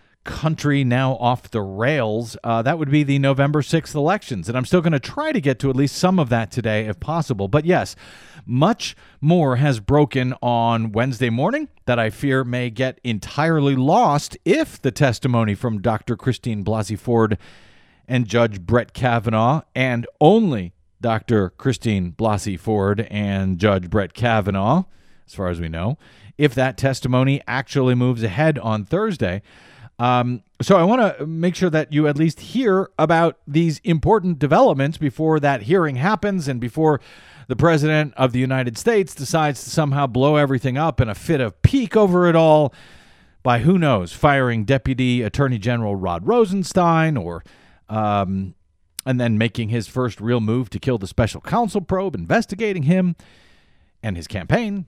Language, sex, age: English, male, 40-59